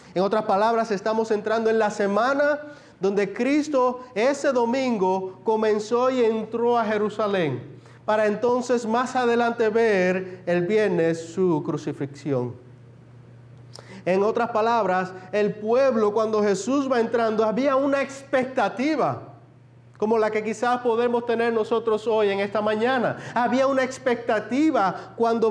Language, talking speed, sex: Spanish, 125 wpm, male